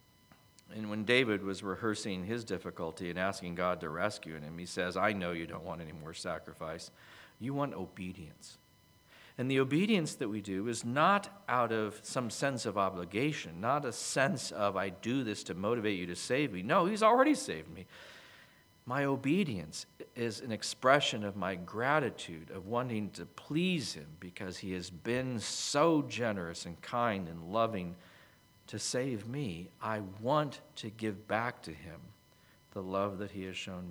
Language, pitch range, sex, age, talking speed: English, 90-125 Hz, male, 50-69, 170 wpm